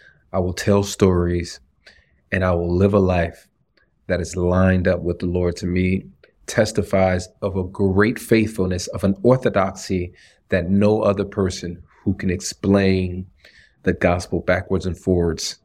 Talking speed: 150 wpm